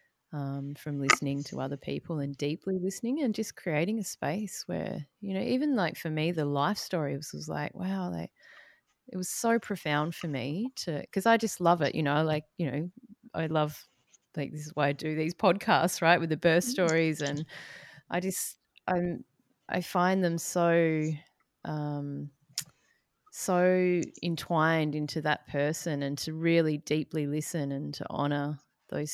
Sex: female